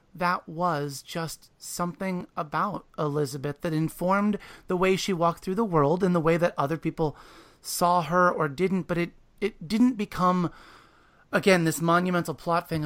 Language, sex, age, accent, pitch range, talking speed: English, male, 30-49, American, 150-190 Hz, 165 wpm